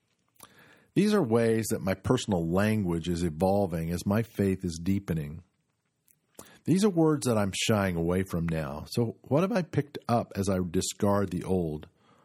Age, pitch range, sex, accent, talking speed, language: 50-69, 90-115 Hz, male, American, 165 wpm, English